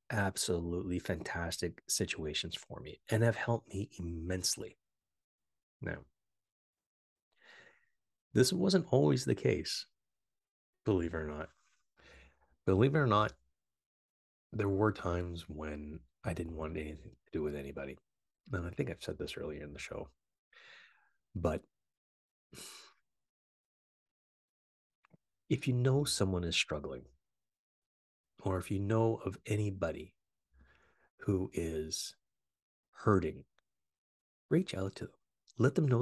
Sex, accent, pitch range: male, American, 80-120 Hz